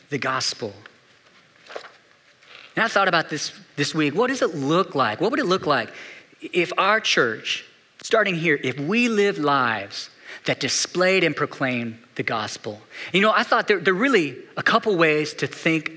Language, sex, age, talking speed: English, male, 40-59, 175 wpm